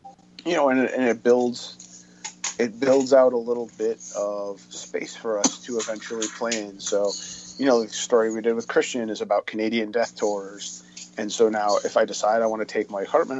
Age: 30-49